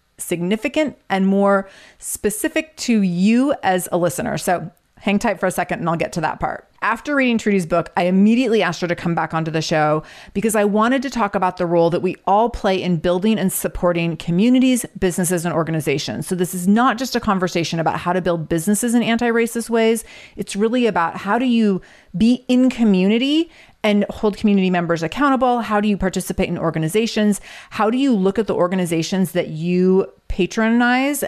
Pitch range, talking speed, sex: 175-230 Hz, 190 wpm, female